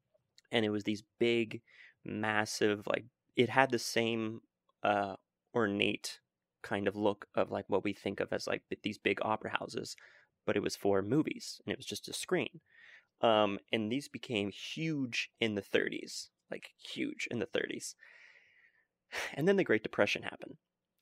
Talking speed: 165 wpm